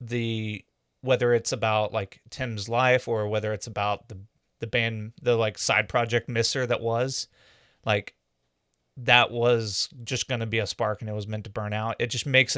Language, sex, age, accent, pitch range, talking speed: English, male, 30-49, American, 110-125 Hz, 190 wpm